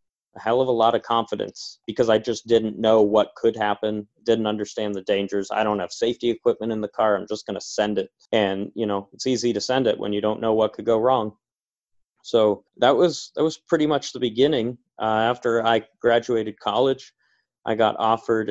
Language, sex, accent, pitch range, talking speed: English, male, American, 105-120 Hz, 215 wpm